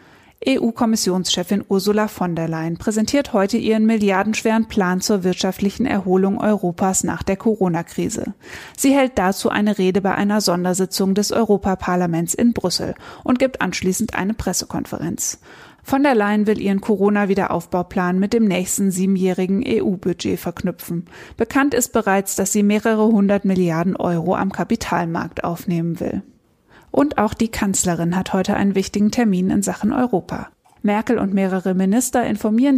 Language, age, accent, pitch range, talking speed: German, 20-39, German, 185-220 Hz, 140 wpm